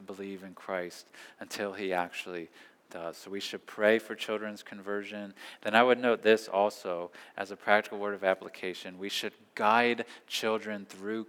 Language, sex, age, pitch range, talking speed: English, male, 20-39, 105-120 Hz, 165 wpm